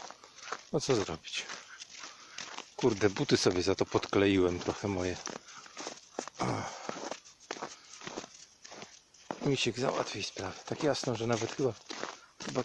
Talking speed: 95 wpm